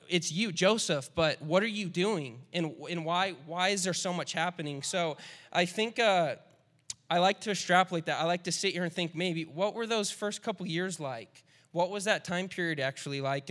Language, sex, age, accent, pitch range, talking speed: English, male, 20-39, American, 145-175 Hz, 215 wpm